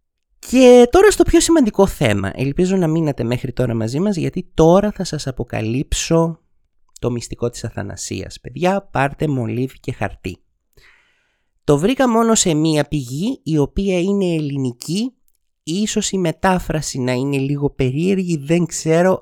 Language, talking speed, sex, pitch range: Greek, 145 wpm, male, 130-195 Hz